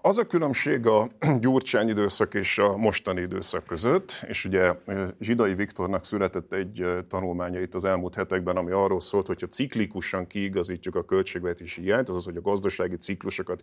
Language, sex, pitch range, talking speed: Hungarian, male, 90-110 Hz, 160 wpm